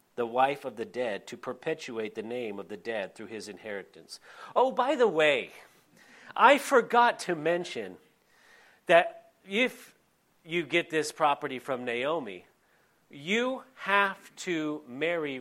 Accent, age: American, 40-59